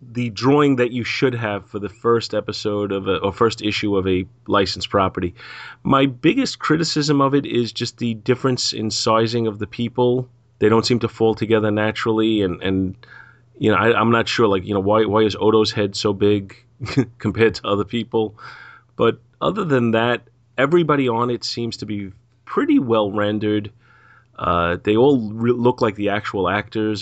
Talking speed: 185 wpm